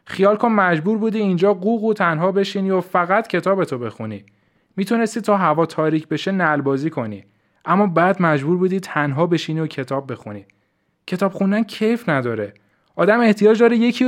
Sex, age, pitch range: male, 20-39, 125-195 Hz